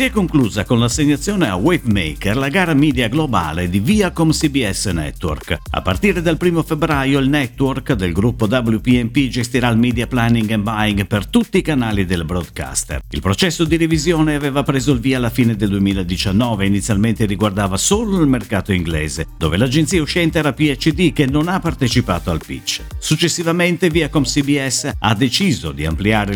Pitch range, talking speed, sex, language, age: 105-155 Hz, 170 wpm, male, Italian, 50-69